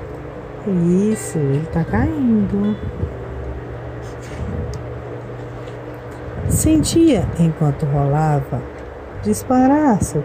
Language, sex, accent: Portuguese, female, Brazilian